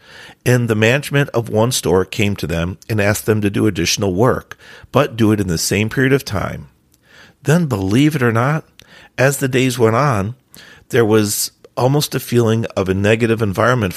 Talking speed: 190 wpm